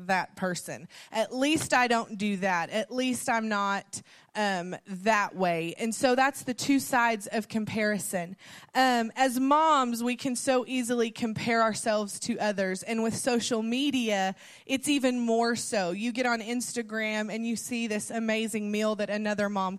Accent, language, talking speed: American, English, 165 wpm